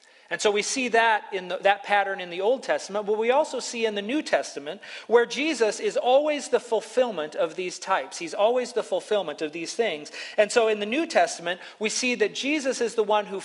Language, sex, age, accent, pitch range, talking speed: English, male, 40-59, American, 175-230 Hz, 230 wpm